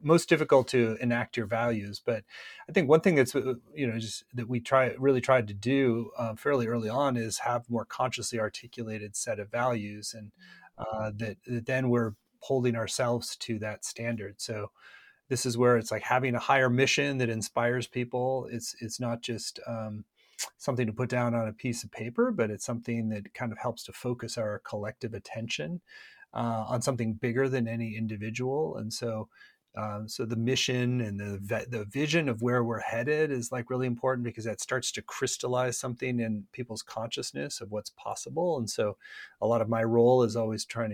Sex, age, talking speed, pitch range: male, 30-49, 190 wpm, 110-125 Hz